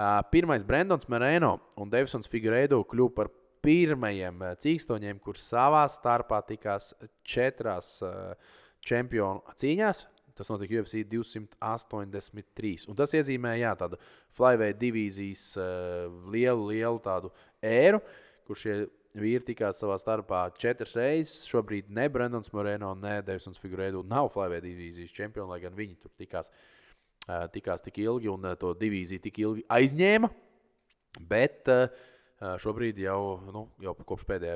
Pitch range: 100-125 Hz